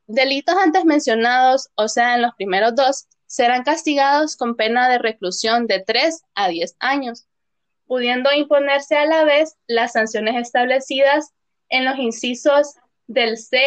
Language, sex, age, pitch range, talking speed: Spanish, female, 10-29, 230-285 Hz, 145 wpm